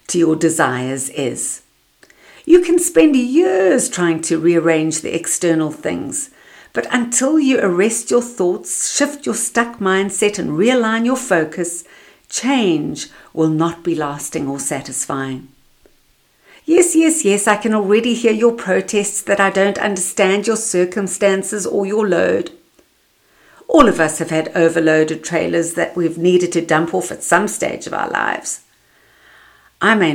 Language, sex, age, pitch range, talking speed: English, female, 60-79, 155-210 Hz, 145 wpm